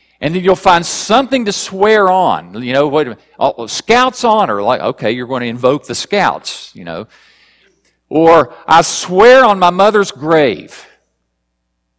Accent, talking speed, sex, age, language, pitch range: American, 165 wpm, male, 50-69, English, 120-200 Hz